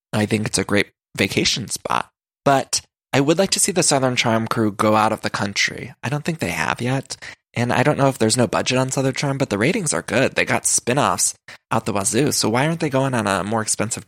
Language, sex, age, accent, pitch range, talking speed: English, male, 20-39, American, 110-140 Hz, 250 wpm